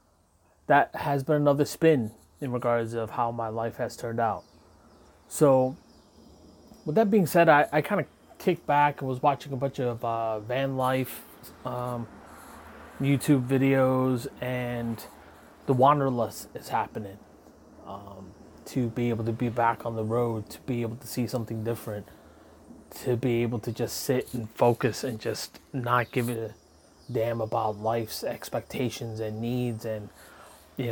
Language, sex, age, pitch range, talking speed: English, male, 20-39, 115-140 Hz, 155 wpm